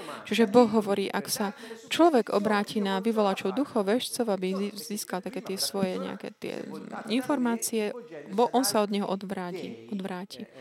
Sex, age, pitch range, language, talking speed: female, 30-49, 195-225 Hz, Slovak, 140 wpm